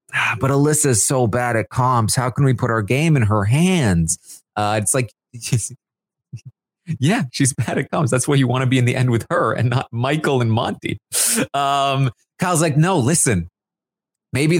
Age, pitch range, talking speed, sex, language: 30-49, 100-130 Hz, 185 wpm, male, English